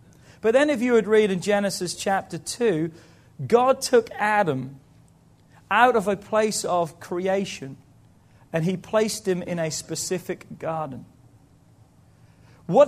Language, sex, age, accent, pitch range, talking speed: English, male, 40-59, British, 170-220 Hz, 130 wpm